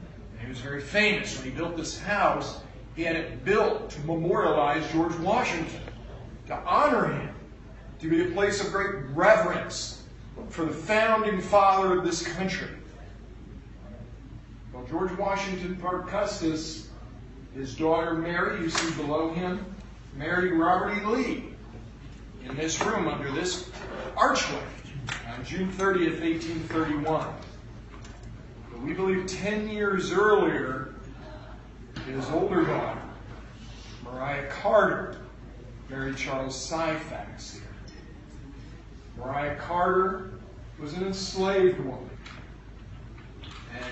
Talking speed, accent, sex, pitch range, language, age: 110 wpm, American, male, 125-180 Hz, English, 40-59